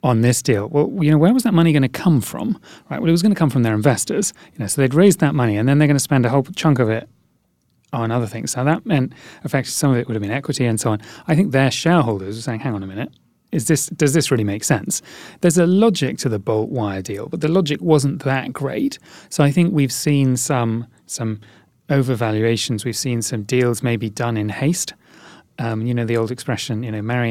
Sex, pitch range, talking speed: male, 115-155 Hz, 255 wpm